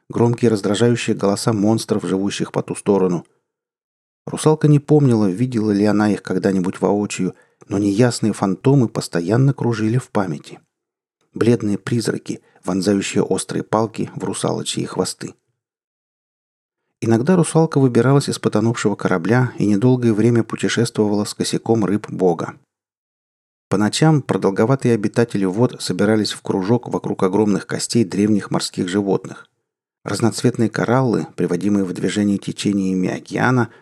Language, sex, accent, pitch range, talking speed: Russian, male, native, 100-125 Hz, 120 wpm